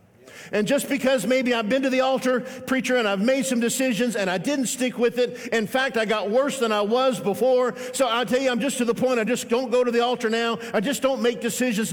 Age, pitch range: 50-69, 195-250 Hz